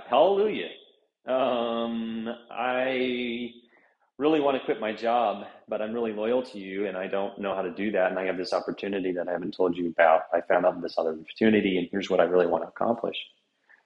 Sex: male